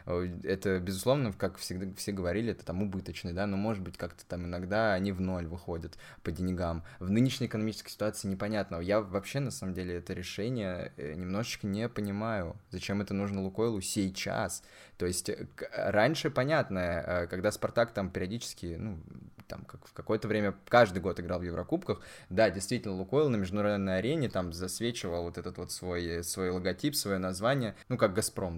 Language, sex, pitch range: Russian, male, 90-110 Hz